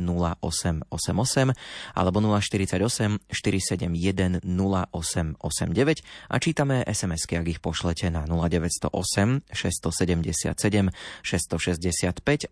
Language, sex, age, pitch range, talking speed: Slovak, male, 30-49, 90-115 Hz, 70 wpm